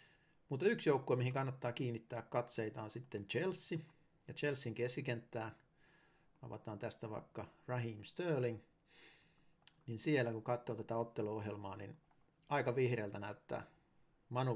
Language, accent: Finnish, native